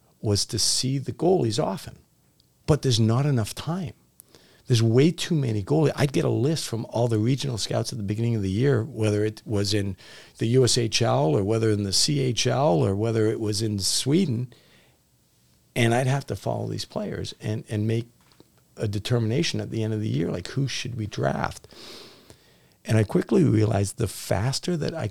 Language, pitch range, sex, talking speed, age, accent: English, 100-130 Hz, male, 190 wpm, 50-69, American